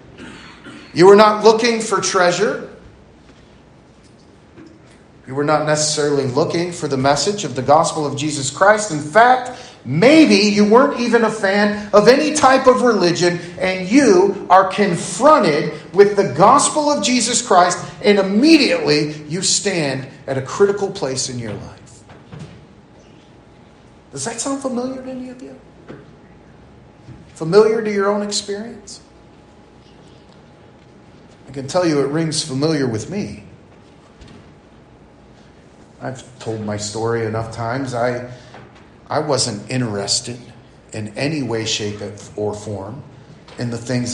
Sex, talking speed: male, 130 wpm